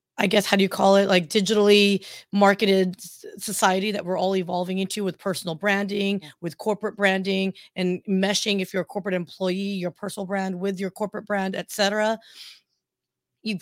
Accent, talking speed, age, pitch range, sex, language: American, 170 wpm, 30-49, 185-210 Hz, female, English